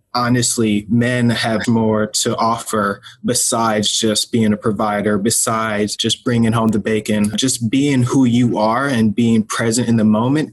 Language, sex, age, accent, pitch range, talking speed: English, male, 20-39, American, 110-125 Hz, 160 wpm